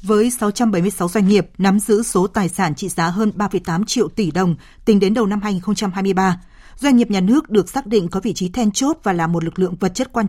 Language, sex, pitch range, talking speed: Vietnamese, female, 190-240 Hz, 240 wpm